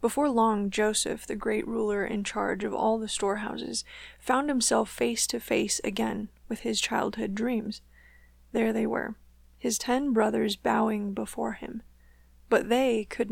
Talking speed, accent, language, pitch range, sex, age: 155 wpm, American, English, 215-235 Hz, female, 20-39